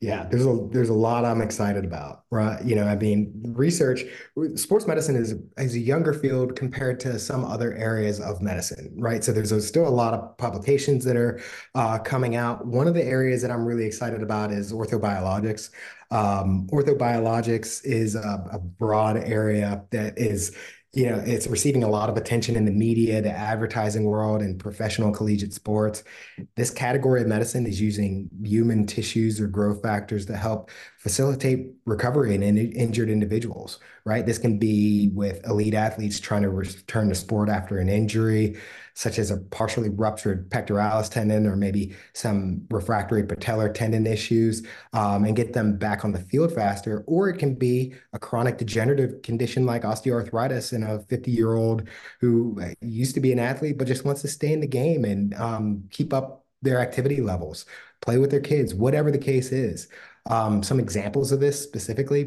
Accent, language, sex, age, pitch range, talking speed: American, English, male, 20-39, 105-125 Hz, 180 wpm